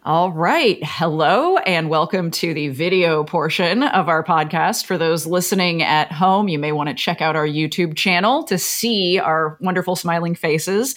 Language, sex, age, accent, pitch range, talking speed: English, female, 30-49, American, 160-210 Hz, 175 wpm